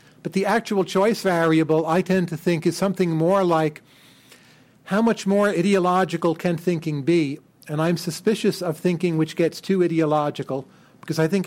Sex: male